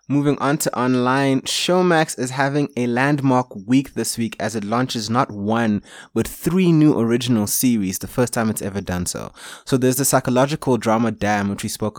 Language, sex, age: English, male, 20-39